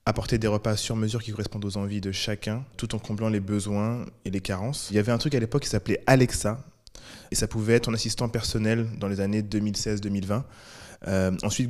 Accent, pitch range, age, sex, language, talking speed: French, 105-120 Hz, 20-39, male, French, 215 wpm